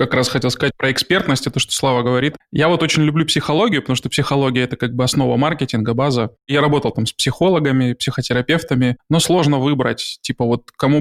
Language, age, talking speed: Russian, 20-39, 205 wpm